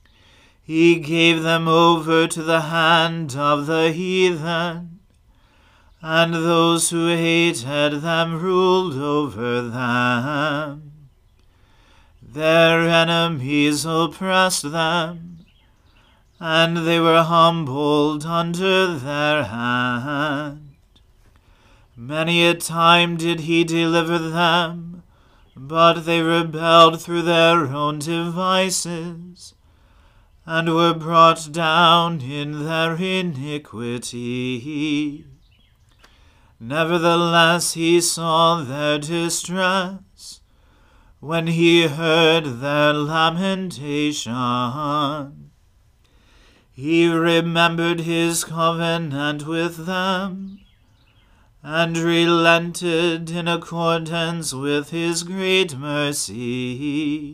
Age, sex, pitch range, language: 40-59, male, 145-170 Hz, English